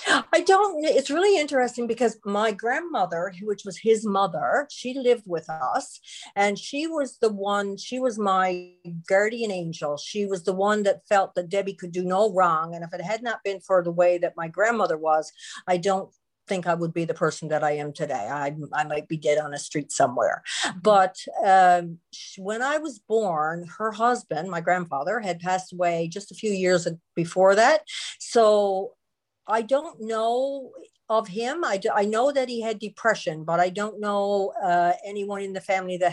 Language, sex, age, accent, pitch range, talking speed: English, female, 50-69, American, 175-220 Hz, 190 wpm